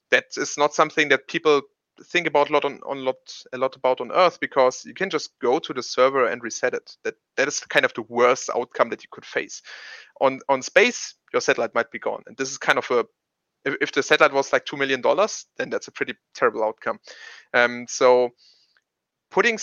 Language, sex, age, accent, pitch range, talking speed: English, male, 30-49, German, 120-150 Hz, 225 wpm